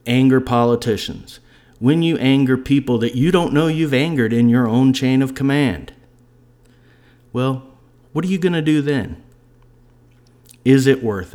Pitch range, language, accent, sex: 110-130 Hz, English, American, male